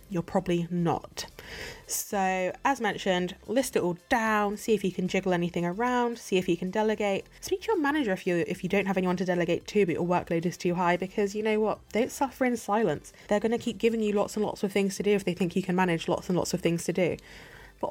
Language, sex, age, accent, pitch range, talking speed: English, female, 10-29, British, 180-235 Hz, 260 wpm